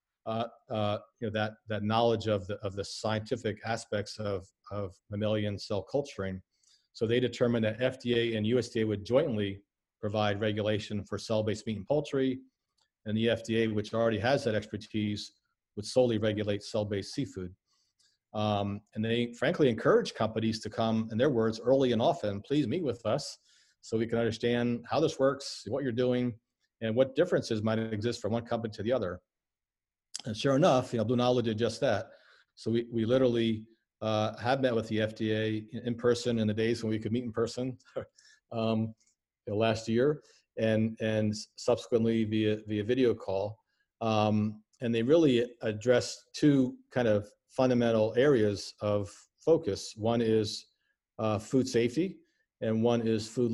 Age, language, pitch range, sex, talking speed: 40-59, English, 105-120 Hz, male, 170 wpm